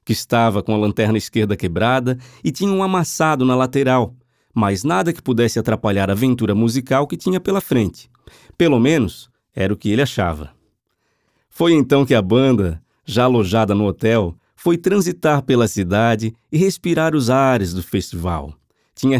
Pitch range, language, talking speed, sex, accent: 105-135 Hz, Portuguese, 160 wpm, male, Brazilian